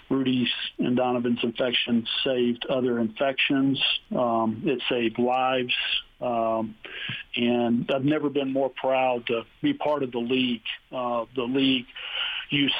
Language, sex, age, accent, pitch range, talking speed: English, male, 50-69, American, 120-135 Hz, 130 wpm